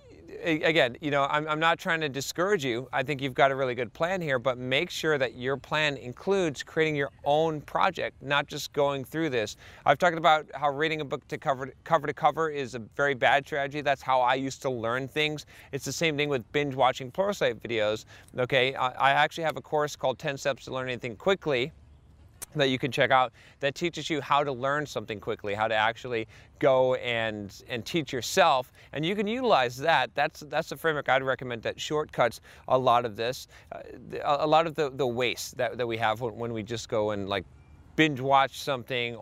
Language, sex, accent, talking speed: English, male, American, 215 wpm